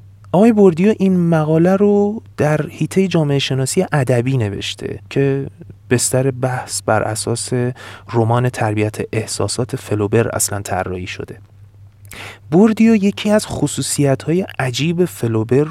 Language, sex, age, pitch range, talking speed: Persian, male, 30-49, 105-155 Hz, 110 wpm